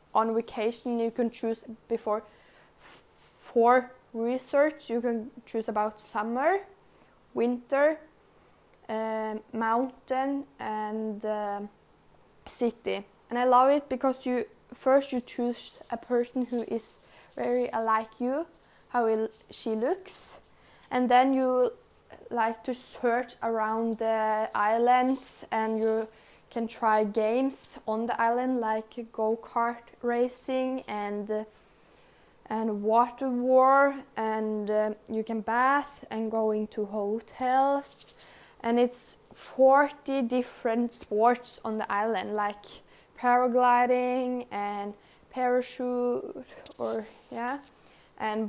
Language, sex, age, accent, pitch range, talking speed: English, female, 10-29, Norwegian, 220-250 Hz, 110 wpm